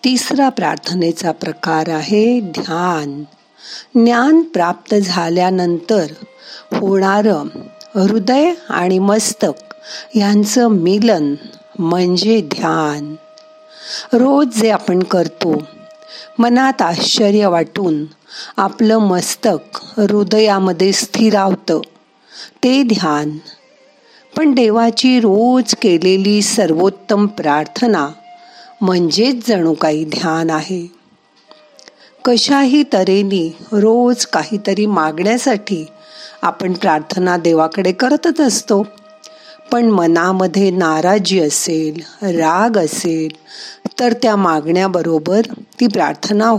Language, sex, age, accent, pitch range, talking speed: Marathi, female, 50-69, native, 175-235 Hz, 80 wpm